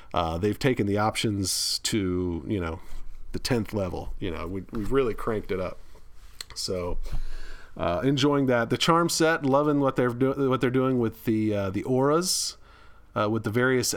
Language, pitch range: English, 100-125 Hz